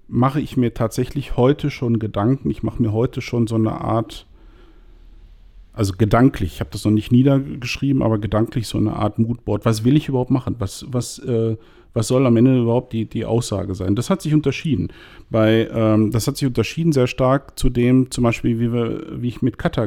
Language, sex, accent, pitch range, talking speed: German, male, German, 110-130 Hz, 205 wpm